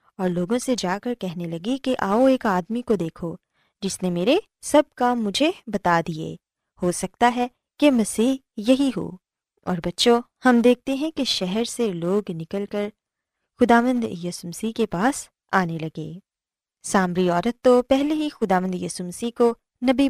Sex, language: female, Urdu